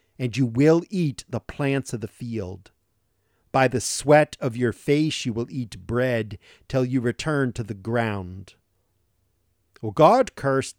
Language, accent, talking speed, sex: English, American, 150 wpm, male